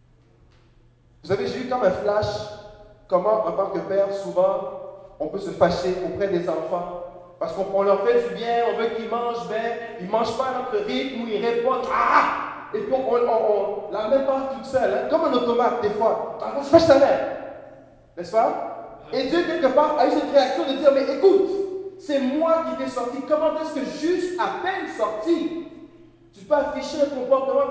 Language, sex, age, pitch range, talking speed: French, male, 30-49, 185-275 Hz, 205 wpm